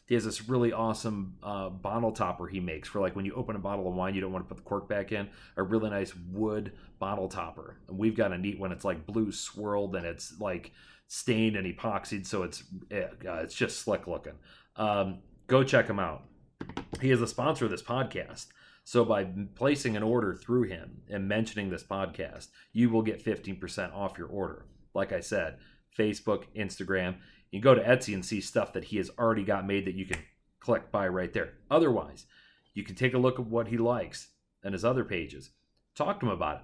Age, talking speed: 30-49, 210 wpm